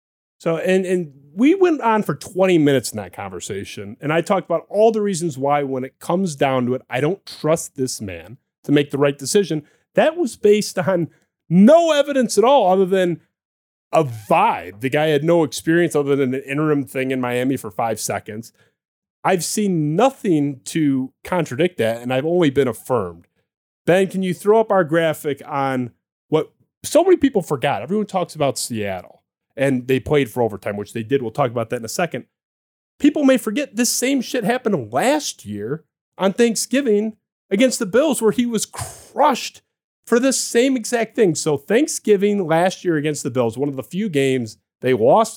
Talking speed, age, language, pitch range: 190 wpm, 30-49, English, 130-200 Hz